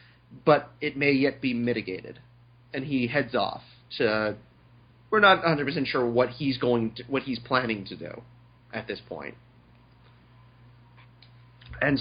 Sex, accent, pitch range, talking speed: male, American, 120-150 Hz, 140 wpm